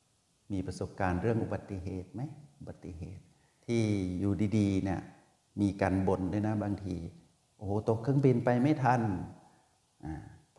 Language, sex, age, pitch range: Thai, male, 60-79, 100-130 Hz